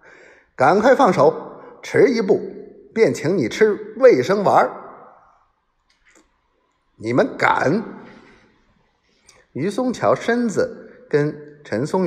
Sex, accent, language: male, native, Chinese